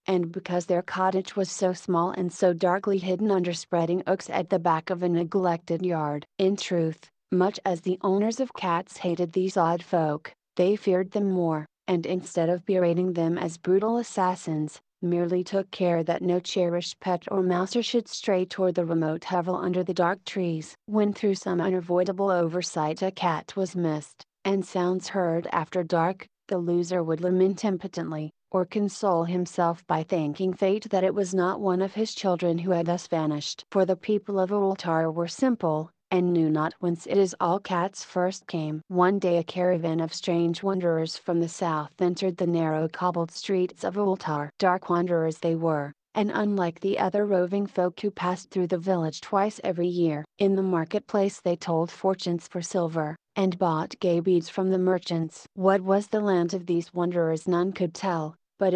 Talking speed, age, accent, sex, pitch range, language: 185 wpm, 30-49, American, female, 170-190 Hz, English